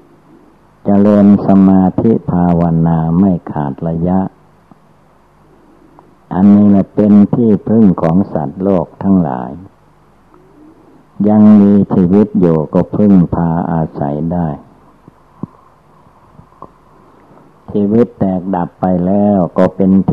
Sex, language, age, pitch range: male, Thai, 60-79, 80-95 Hz